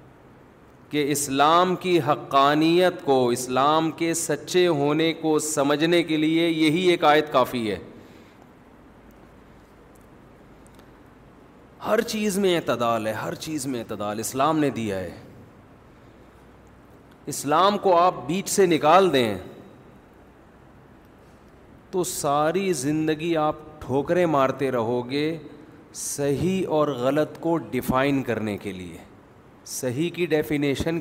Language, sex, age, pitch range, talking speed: Urdu, male, 40-59, 125-165 Hz, 110 wpm